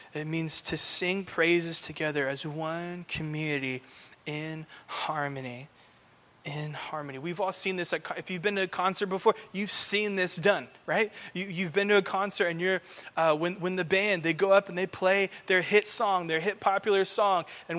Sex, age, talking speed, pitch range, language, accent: male, 20-39, 190 wpm, 170-205 Hz, English, American